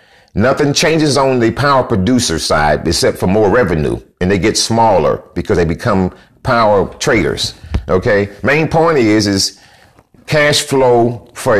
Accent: American